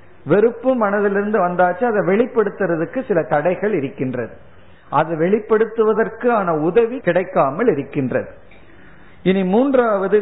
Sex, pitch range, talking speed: male, 170-225 Hz, 95 wpm